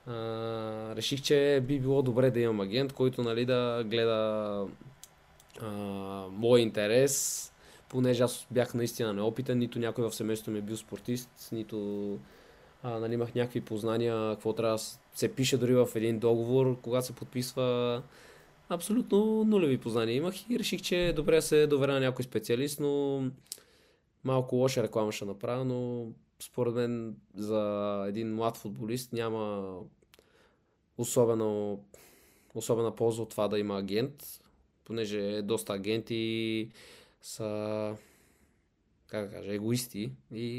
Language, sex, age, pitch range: Bulgarian, male, 20-39, 110-125 Hz